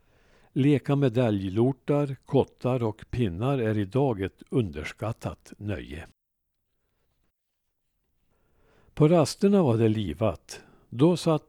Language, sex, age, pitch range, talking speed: Swedish, male, 60-79, 110-135 Hz, 90 wpm